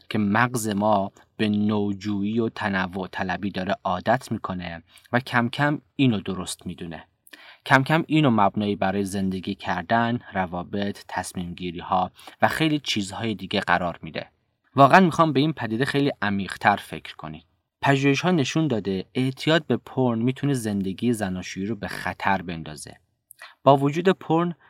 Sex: male